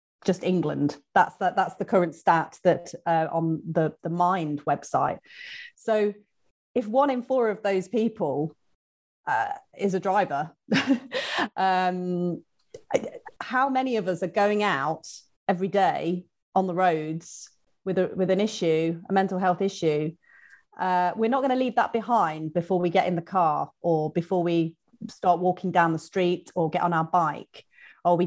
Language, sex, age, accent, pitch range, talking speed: English, female, 30-49, British, 165-205 Hz, 165 wpm